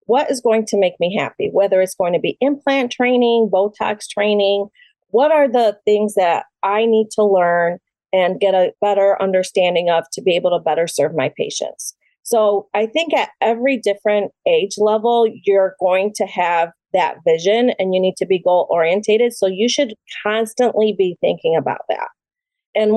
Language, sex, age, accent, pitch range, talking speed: English, female, 40-59, American, 195-250 Hz, 180 wpm